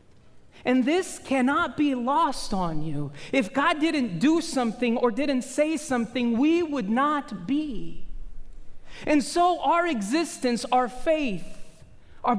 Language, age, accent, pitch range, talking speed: English, 40-59, American, 185-270 Hz, 130 wpm